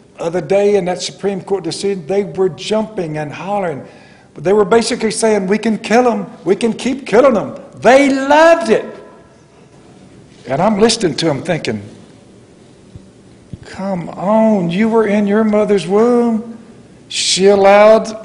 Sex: male